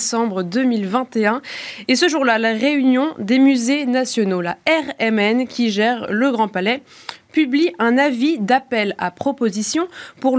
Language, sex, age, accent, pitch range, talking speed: French, female, 20-39, French, 205-265 Hz, 135 wpm